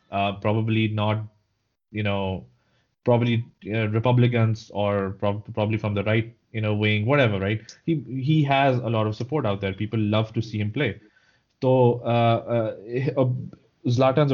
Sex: male